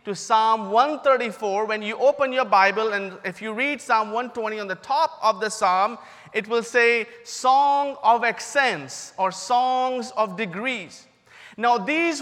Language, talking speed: English, 155 wpm